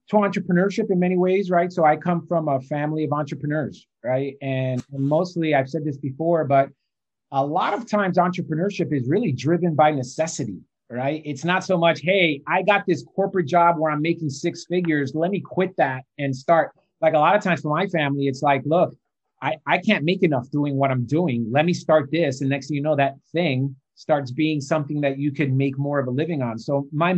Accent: American